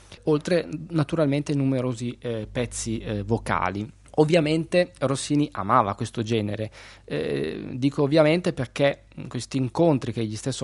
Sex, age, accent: male, 20-39, native